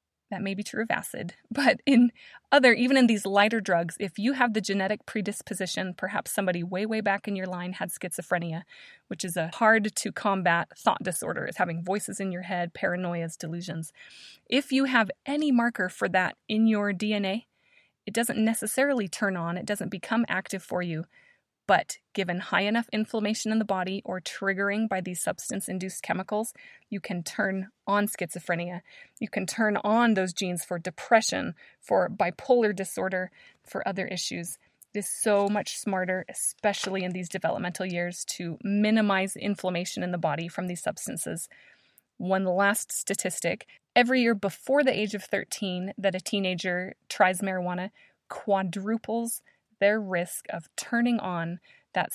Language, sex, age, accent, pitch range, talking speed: English, female, 20-39, American, 180-215 Hz, 160 wpm